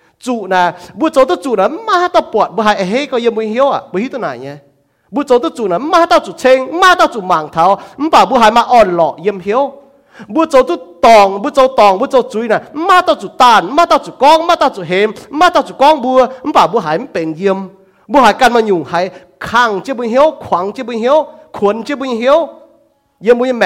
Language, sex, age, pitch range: English, male, 30-49, 200-290 Hz